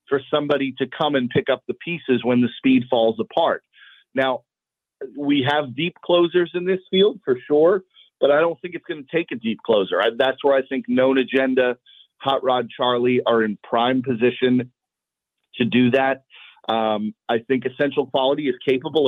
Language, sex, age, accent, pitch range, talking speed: English, male, 40-59, American, 115-140 Hz, 180 wpm